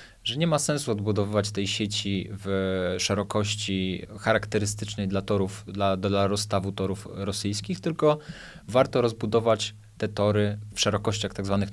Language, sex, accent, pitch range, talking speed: Polish, male, native, 95-110 Hz, 135 wpm